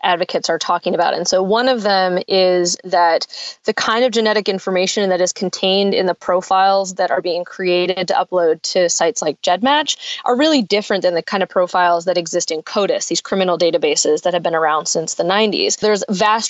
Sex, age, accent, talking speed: female, 20-39, American, 205 wpm